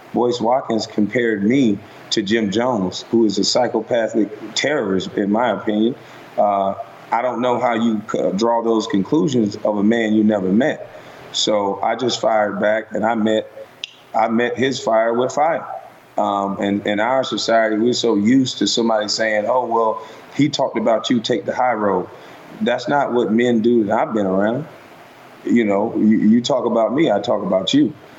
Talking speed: 185 wpm